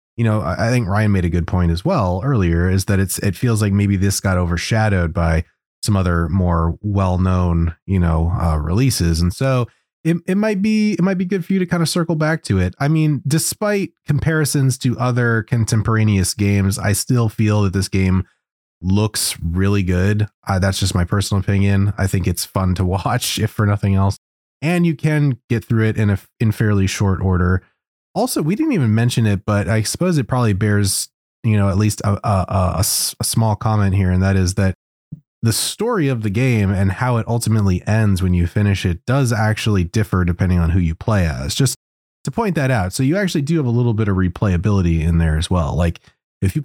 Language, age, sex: English, 30-49, male